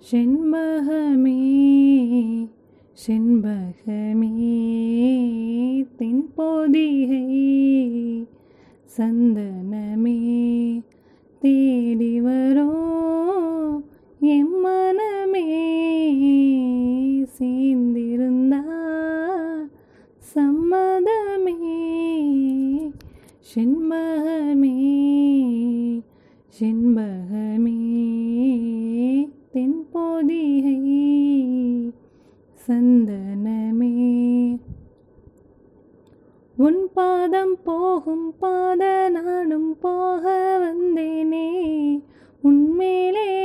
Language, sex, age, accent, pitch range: Tamil, female, 20-39, native, 250-345 Hz